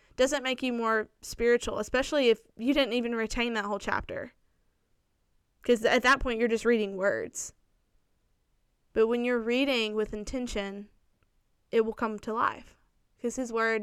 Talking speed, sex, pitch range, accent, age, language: 155 wpm, female, 215-245 Hz, American, 10-29, English